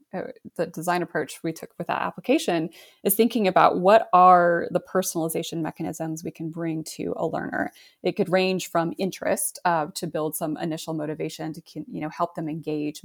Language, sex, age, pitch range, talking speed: English, female, 20-39, 155-180 Hz, 185 wpm